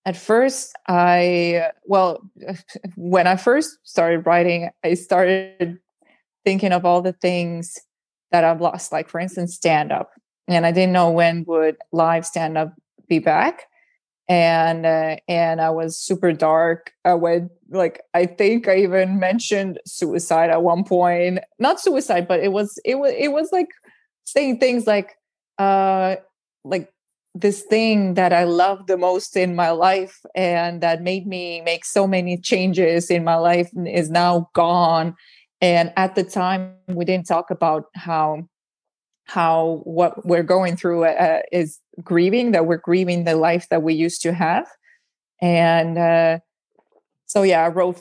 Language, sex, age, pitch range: English, female, 20-39, 170-190 Hz